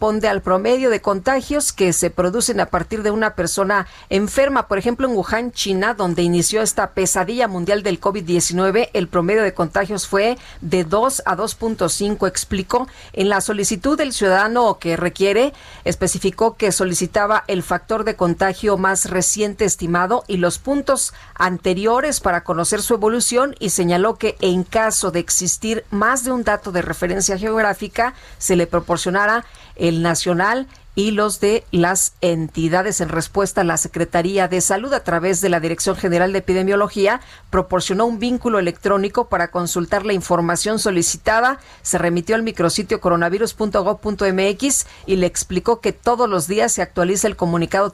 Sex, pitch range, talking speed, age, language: female, 180-220 Hz, 155 wpm, 40-59, Spanish